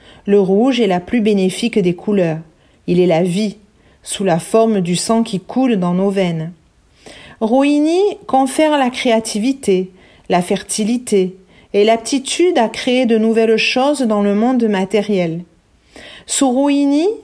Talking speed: 145 wpm